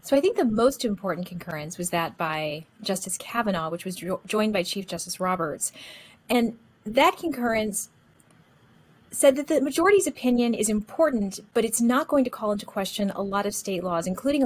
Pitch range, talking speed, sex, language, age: 185-255 Hz, 180 wpm, female, English, 30-49